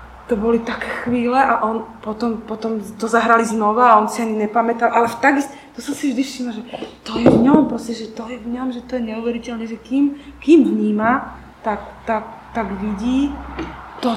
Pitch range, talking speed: 210-245 Hz, 200 wpm